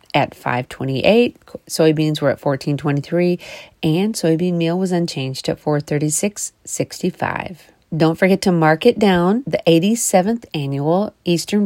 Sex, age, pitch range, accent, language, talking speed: female, 40-59, 155-195 Hz, American, English, 160 wpm